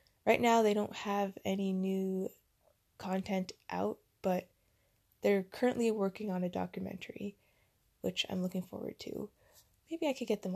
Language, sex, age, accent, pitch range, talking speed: English, female, 20-39, American, 185-215 Hz, 150 wpm